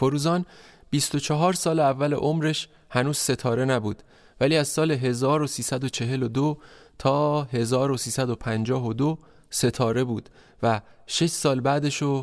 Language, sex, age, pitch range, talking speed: Persian, male, 30-49, 120-145 Hz, 100 wpm